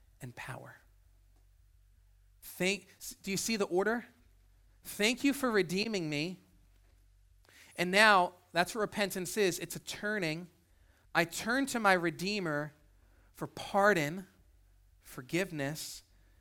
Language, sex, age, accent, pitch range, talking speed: English, male, 30-49, American, 115-170 Hz, 110 wpm